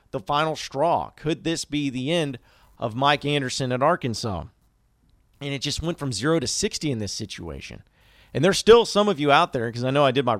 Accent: American